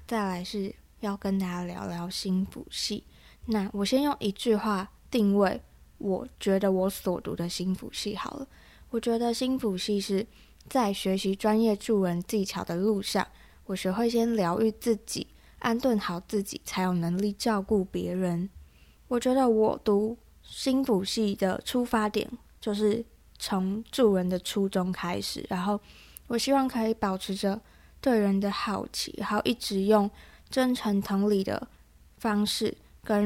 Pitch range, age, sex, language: 195-225 Hz, 20-39, female, Chinese